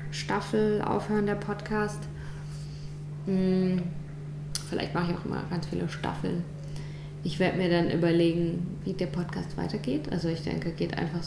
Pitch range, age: 150-180 Hz, 20-39